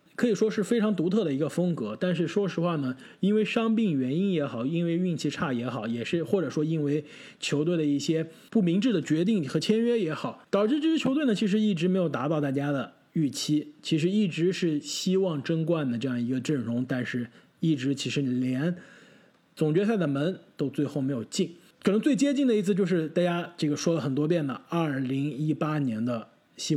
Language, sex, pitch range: Chinese, male, 140-195 Hz